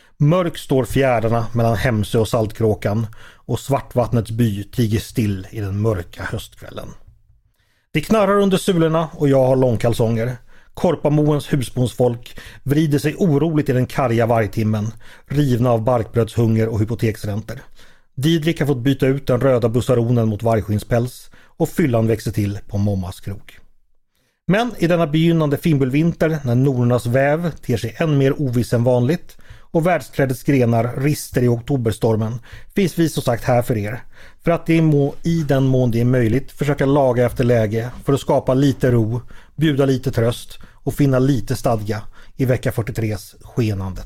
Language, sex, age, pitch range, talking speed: Swedish, male, 40-59, 115-145 Hz, 155 wpm